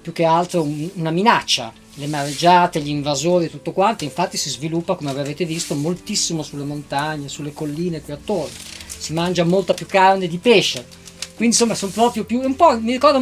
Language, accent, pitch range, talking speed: Italian, native, 150-200 Hz, 185 wpm